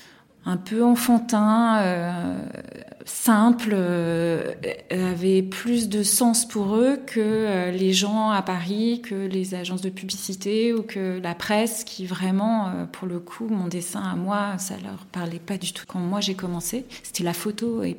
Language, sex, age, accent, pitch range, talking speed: French, female, 30-49, French, 180-220 Hz, 170 wpm